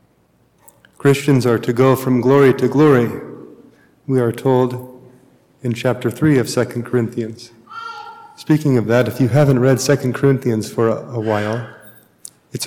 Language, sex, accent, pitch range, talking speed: English, male, American, 120-135 Hz, 145 wpm